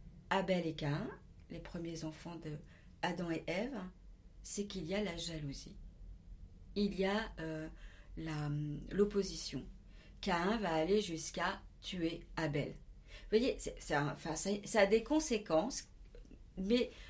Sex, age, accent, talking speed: female, 40-59, French, 135 wpm